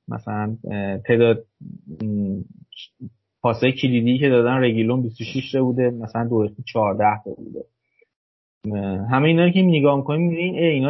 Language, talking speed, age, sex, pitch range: Persian, 125 wpm, 30-49, male, 110-140 Hz